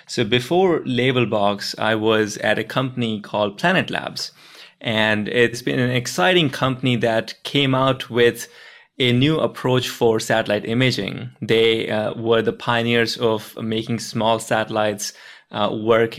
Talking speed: 140 wpm